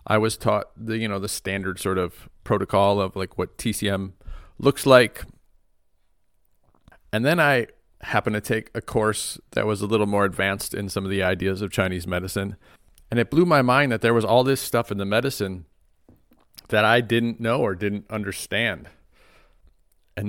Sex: male